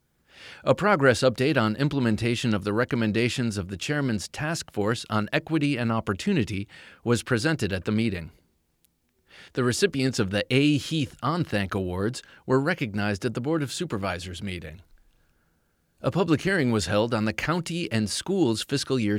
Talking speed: 155 wpm